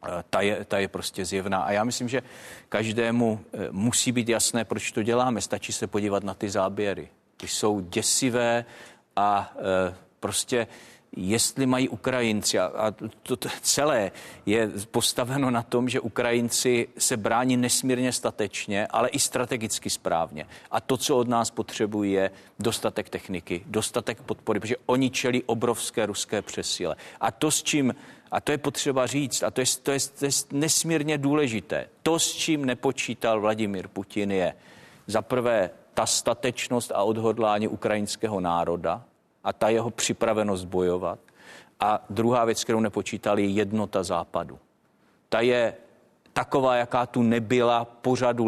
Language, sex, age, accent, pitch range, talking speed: Czech, male, 40-59, native, 105-125 Hz, 145 wpm